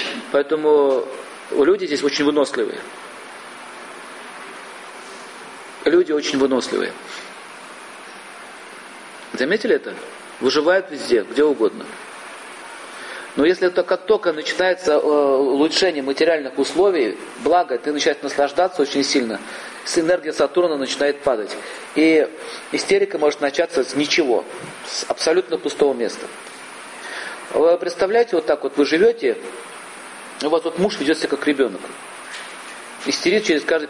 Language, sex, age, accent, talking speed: Russian, male, 40-59, native, 105 wpm